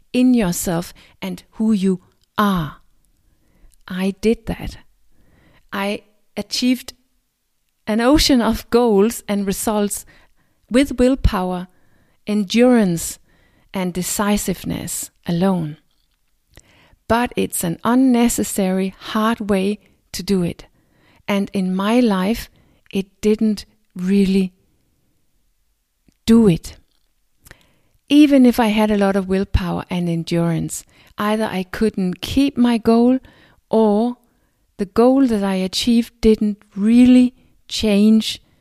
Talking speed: 105 wpm